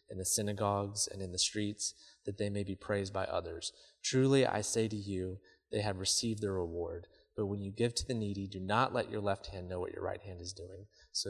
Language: English